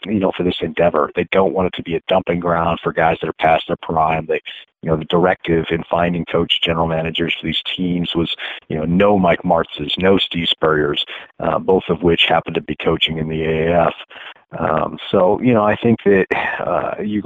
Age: 40-59